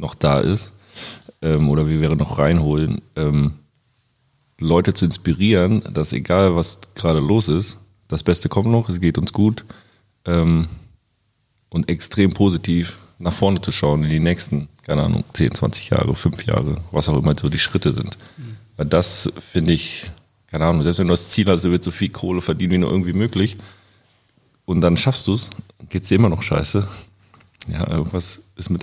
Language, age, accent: German, 30-49, German